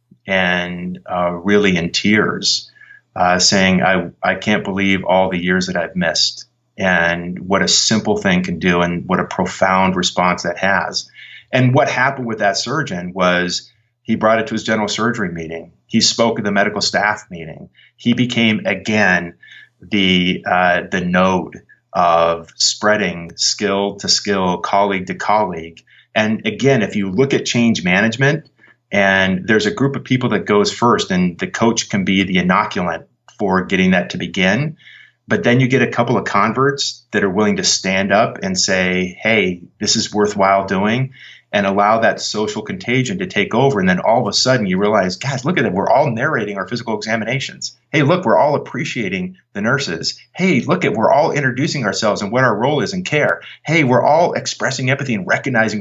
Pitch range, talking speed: 95-135 Hz, 185 wpm